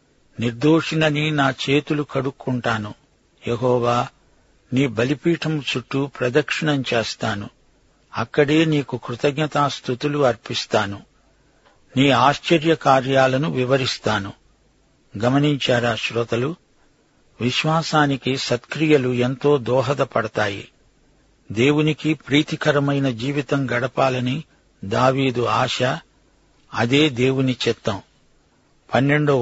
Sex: male